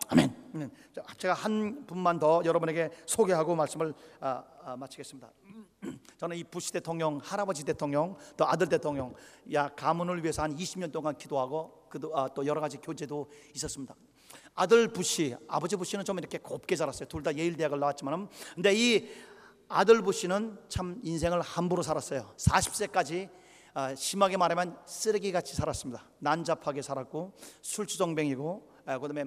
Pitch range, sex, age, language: 155-200 Hz, male, 40-59, Korean